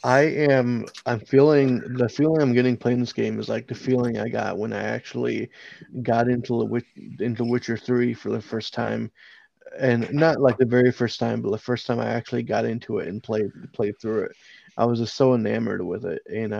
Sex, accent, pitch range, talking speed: male, American, 115-130 Hz, 215 wpm